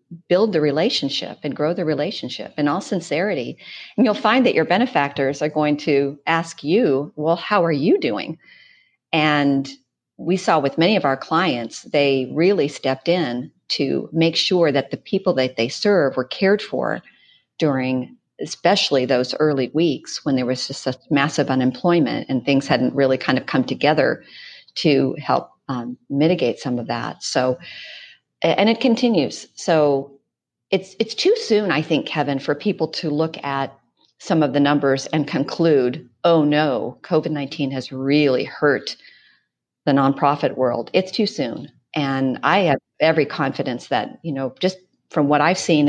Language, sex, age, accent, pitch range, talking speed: English, female, 50-69, American, 135-170 Hz, 165 wpm